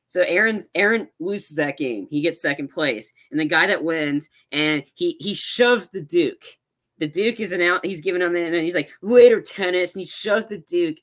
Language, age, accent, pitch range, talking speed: English, 20-39, American, 140-180 Hz, 225 wpm